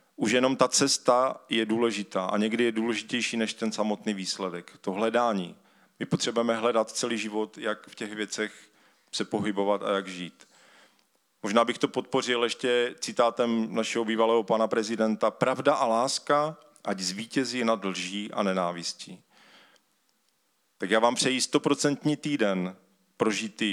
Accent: native